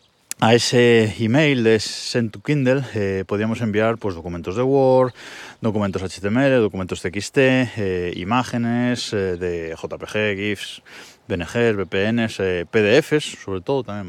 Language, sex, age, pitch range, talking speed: Spanish, male, 20-39, 95-125 Hz, 130 wpm